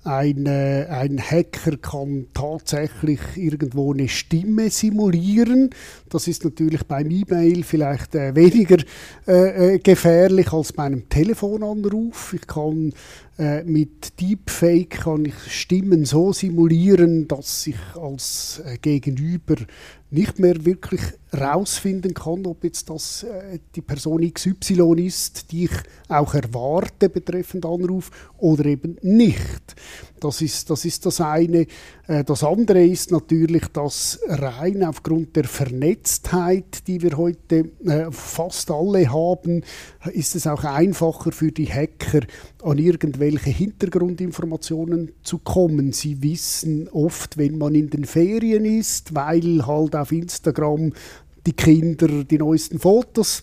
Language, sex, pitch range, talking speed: German, male, 150-180 Hz, 120 wpm